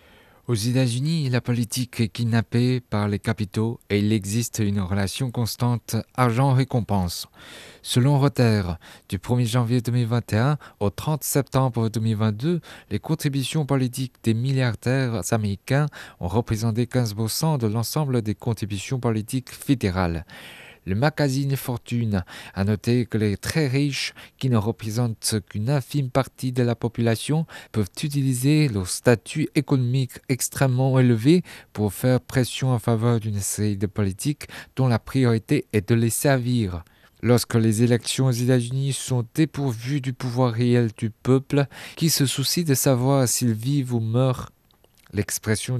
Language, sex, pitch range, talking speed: French, male, 110-135 Hz, 135 wpm